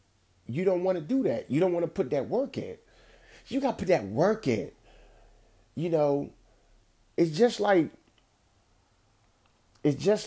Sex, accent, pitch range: male, American, 115-140 Hz